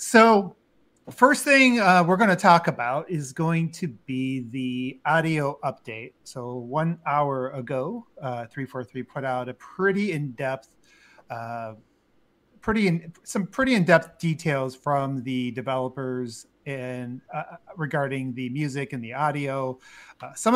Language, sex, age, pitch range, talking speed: English, male, 30-49, 130-175 Hz, 150 wpm